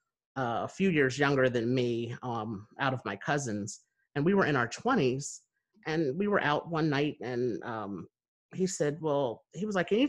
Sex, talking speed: male, 200 wpm